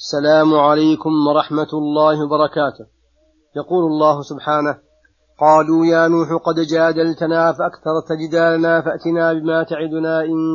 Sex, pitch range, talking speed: male, 155-165 Hz, 110 wpm